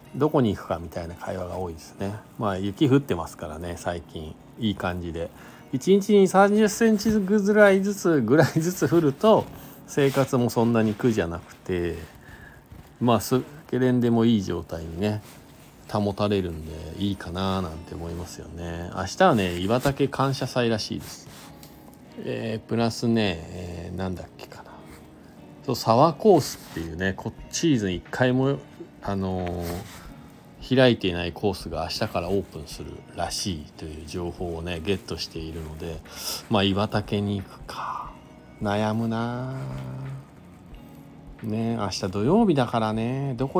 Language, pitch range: Japanese, 85-130 Hz